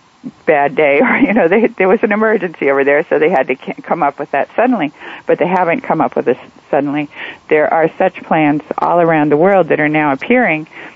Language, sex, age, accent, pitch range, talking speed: English, female, 50-69, American, 145-175 Hz, 225 wpm